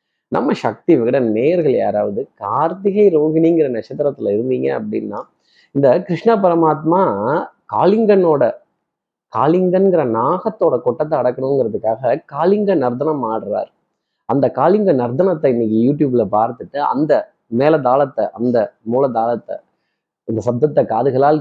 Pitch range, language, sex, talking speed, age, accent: 125-180 Hz, Tamil, male, 95 wpm, 20-39, native